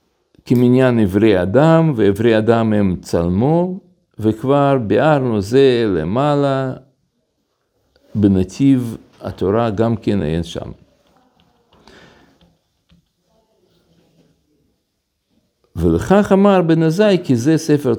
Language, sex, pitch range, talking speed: Hebrew, male, 100-140 Hz, 80 wpm